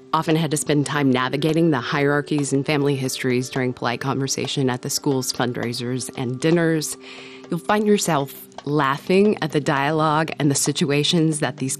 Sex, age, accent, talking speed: female, 30-49, American, 165 wpm